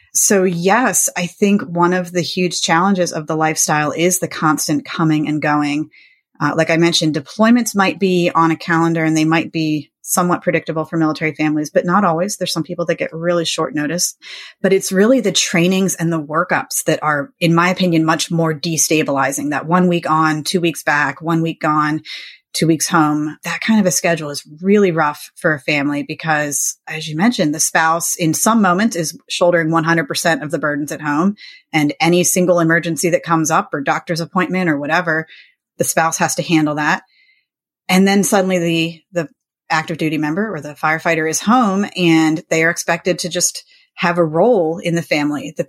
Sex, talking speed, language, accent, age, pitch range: female, 195 wpm, English, American, 30-49, 155-180 Hz